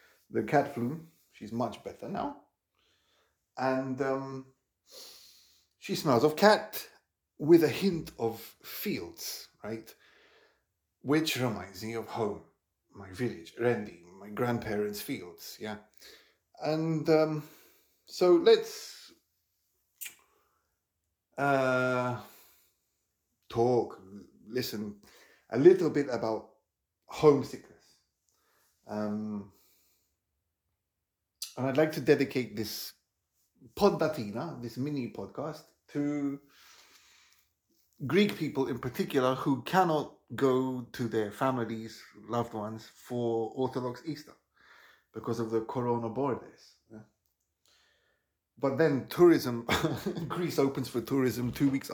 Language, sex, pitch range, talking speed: English, male, 105-140 Hz, 95 wpm